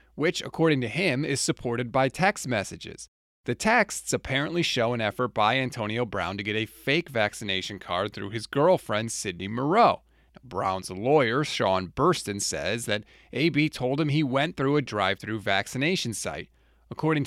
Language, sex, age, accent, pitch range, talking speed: English, male, 30-49, American, 105-145 Hz, 165 wpm